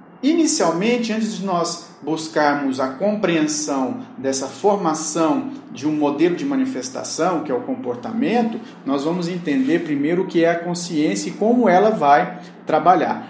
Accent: Brazilian